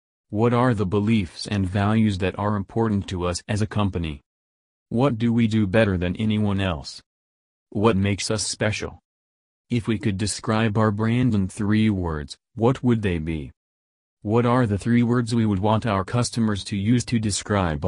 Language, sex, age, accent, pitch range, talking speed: English, male, 40-59, American, 95-115 Hz, 180 wpm